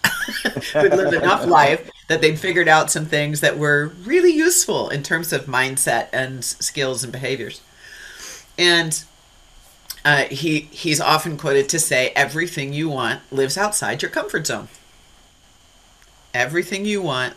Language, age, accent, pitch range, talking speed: English, 40-59, American, 135-170 Hz, 140 wpm